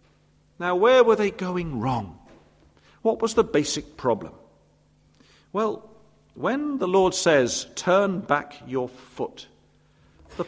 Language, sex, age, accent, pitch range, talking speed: English, male, 50-69, British, 120-200 Hz, 120 wpm